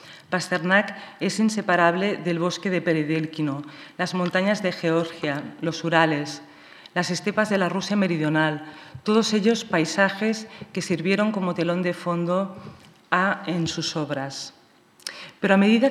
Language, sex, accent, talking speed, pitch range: Spanish, female, Spanish, 130 wpm, 165-195 Hz